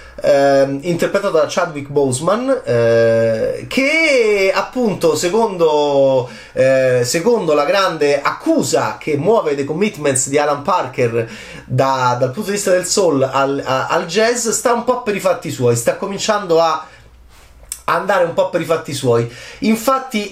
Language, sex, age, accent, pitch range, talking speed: Italian, male, 30-49, native, 130-200 Hz, 145 wpm